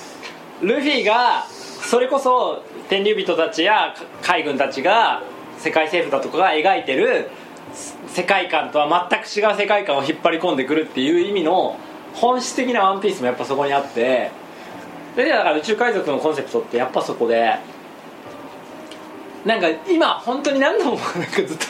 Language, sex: Japanese, male